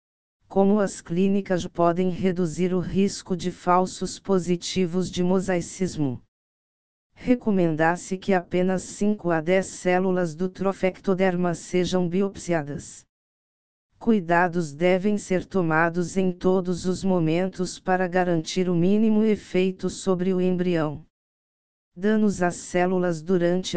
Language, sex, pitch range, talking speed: Portuguese, female, 175-190 Hz, 110 wpm